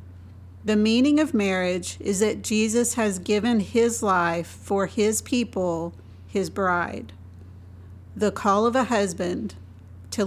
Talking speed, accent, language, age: 130 wpm, American, English, 50-69